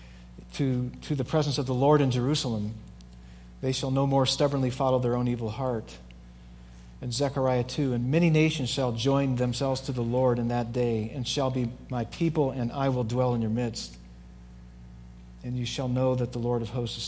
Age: 50-69